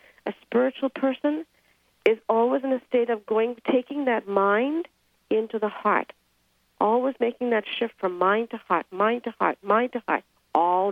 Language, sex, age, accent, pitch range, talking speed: English, female, 50-69, American, 190-230 Hz, 170 wpm